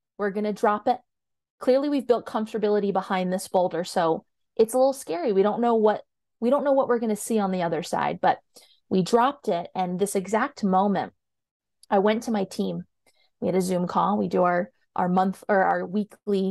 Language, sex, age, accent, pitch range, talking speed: English, female, 30-49, American, 185-220 Hz, 205 wpm